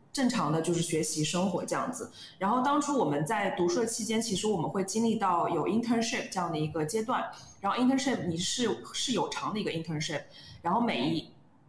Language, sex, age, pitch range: Chinese, female, 20-39, 170-220 Hz